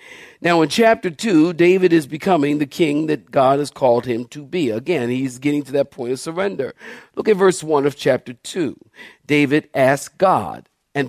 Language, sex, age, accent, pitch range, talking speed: English, male, 50-69, American, 150-230 Hz, 190 wpm